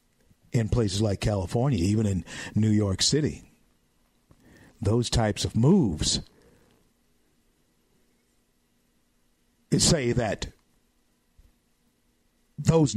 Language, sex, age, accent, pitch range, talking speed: English, male, 50-69, American, 85-130 Hz, 75 wpm